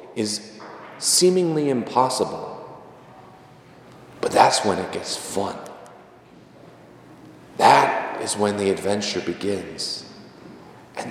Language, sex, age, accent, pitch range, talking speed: English, male, 40-59, American, 105-170 Hz, 85 wpm